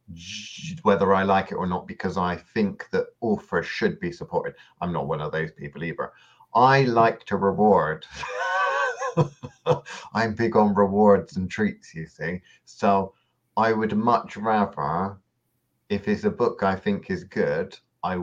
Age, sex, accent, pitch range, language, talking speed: 30-49, male, British, 80-105 Hz, English, 155 wpm